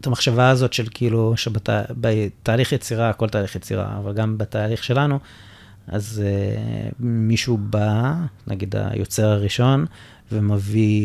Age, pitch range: 30-49, 105-125 Hz